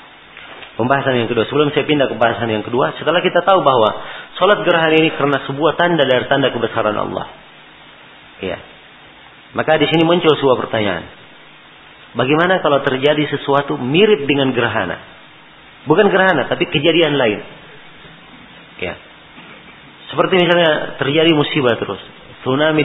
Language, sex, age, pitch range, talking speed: Malay, male, 40-59, 130-170 Hz, 135 wpm